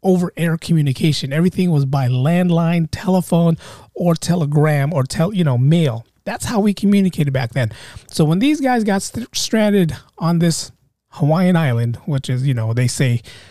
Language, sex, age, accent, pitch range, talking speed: English, male, 30-49, American, 135-205 Hz, 165 wpm